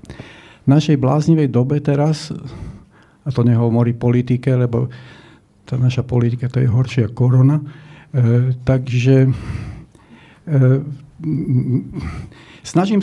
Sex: male